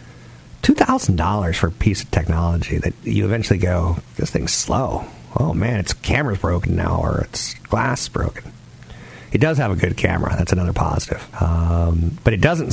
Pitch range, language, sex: 90-120 Hz, English, male